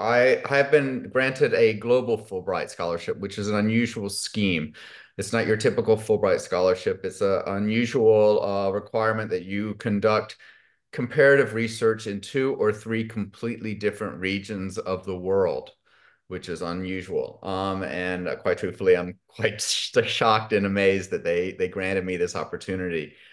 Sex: male